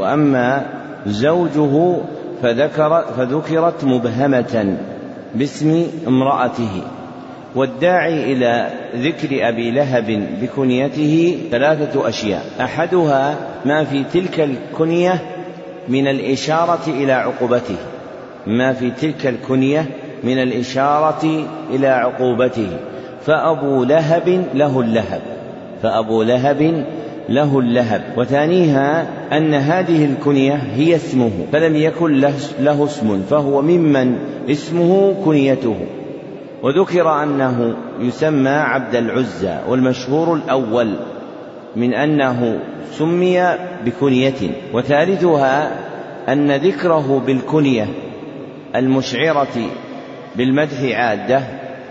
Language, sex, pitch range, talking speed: Arabic, male, 125-155 Hz, 80 wpm